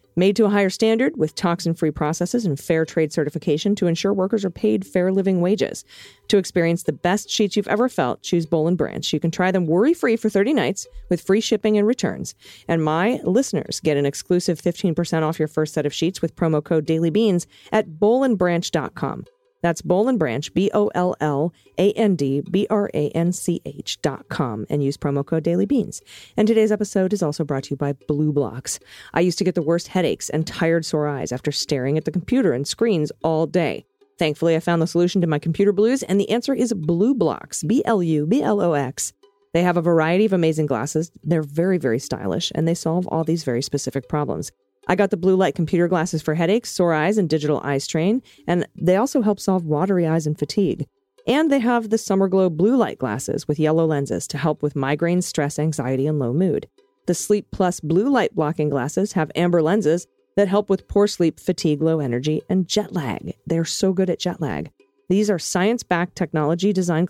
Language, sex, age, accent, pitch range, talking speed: English, female, 40-59, American, 155-200 Hz, 195 wpm